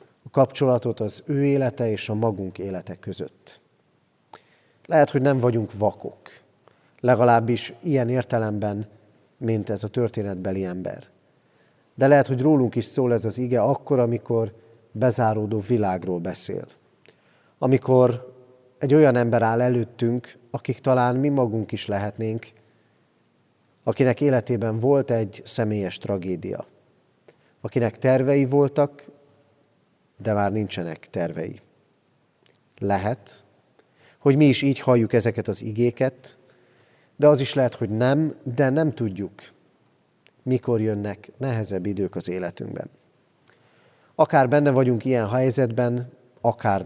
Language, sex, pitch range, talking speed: Hungarian, male, 110-130 Hz, 115 wpm